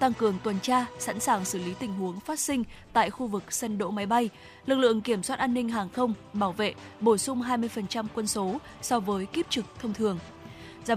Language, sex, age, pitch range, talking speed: Vietnamese, female, 10-29, 205-250 Hz, 225 wpm